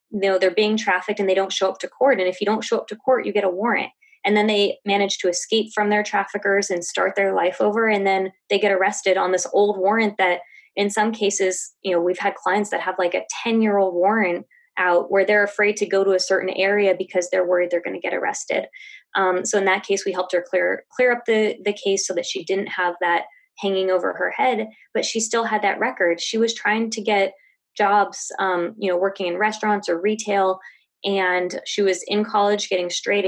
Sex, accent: female, American